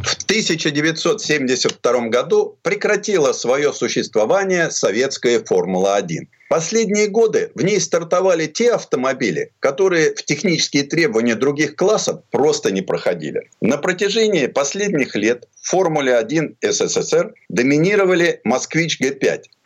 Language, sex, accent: Russian, male, native